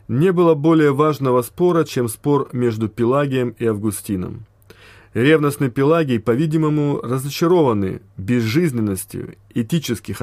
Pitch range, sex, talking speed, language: 110-150 Hz, male, 100 wpm, Russian